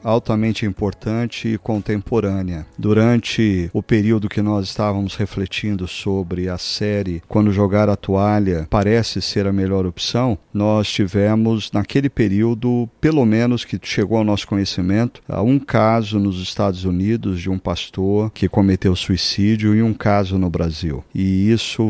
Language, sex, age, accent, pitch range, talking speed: Portuguese, male, 50-69, Brazilian, 100-115 Hz, 145 wpm